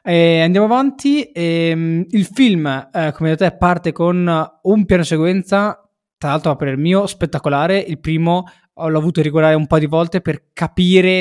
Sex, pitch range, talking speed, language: male, 140-170 Hz, 165 wpm, Italian